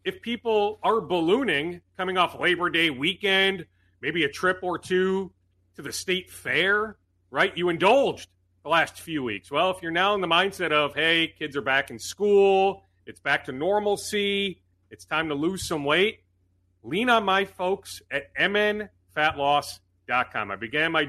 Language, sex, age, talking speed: English, male, 40-59, 165 wpm